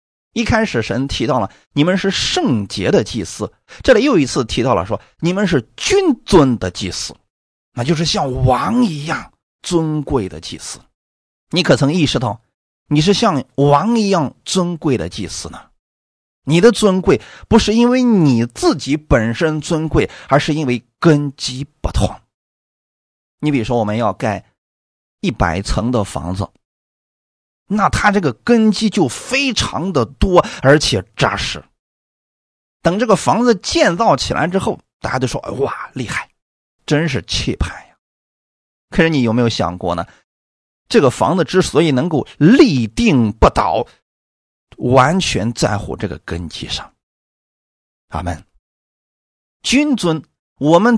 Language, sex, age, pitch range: Chinese, male, 30-49, 115-185 Hz